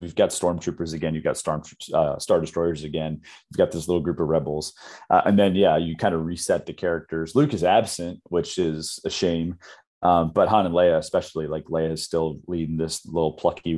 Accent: American